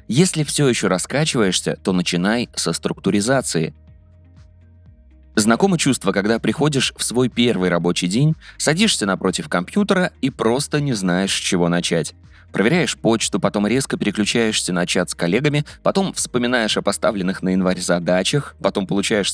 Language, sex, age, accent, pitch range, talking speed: Russian, male, 20-39, native, 90-125 Hz, 140 wpm